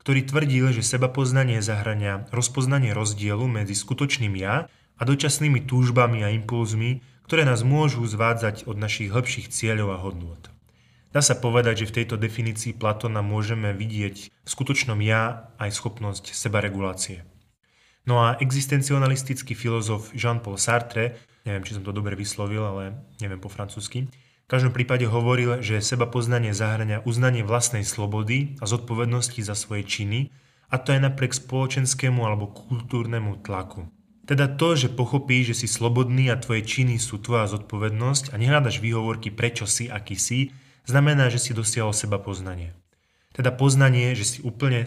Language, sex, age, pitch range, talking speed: Slovak, male, 20-39, 105-130 Hz, 150 wpm